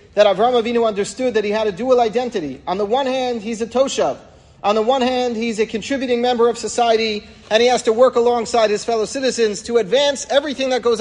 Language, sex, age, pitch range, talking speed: English, male, 40-59, 155-225 Hz, 225 wpm